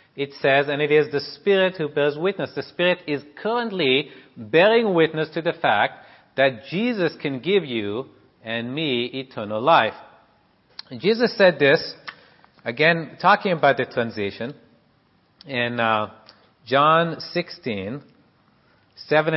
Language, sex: English, male